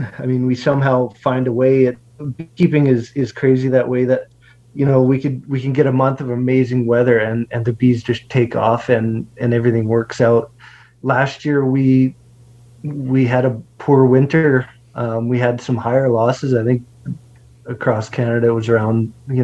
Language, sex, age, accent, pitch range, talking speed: English, male, 20-39, American, 120-130 Hz, 190 wpm